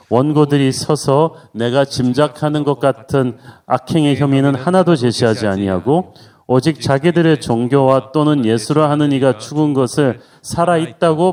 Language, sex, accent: Korean, male, native